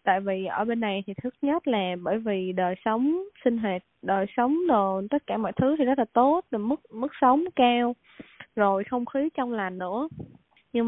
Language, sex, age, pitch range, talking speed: Vietnamese, female, 20-39, 195-255 Hz, 210 wpm